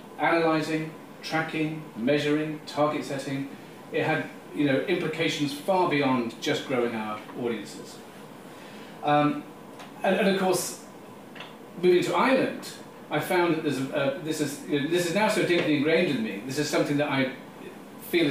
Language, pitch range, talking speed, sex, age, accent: English, 125-165 Hz, 155 wpm, male, 40-59, British